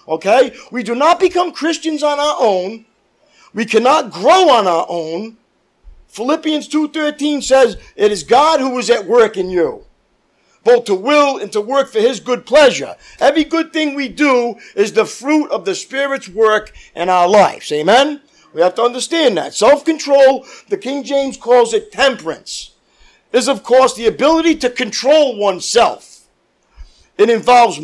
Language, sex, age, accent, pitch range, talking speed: English, male, 50-69, American, 225-325 Hz, 160 wpm